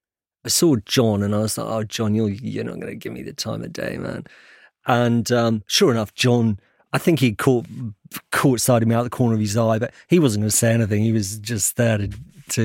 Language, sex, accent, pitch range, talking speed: English, male, British, 110-130 Hz, 250 wpm